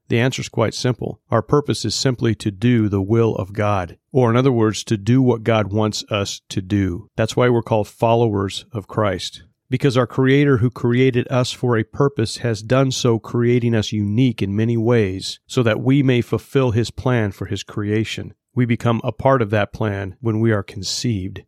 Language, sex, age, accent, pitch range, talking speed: English, male, 40-59, American, 105-125 Hz, 205 wpm